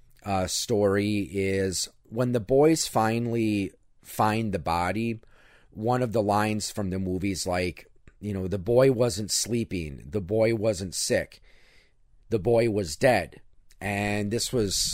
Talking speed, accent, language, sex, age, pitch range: 140 wpm, American, English, male, 40-59, 95-125 Hz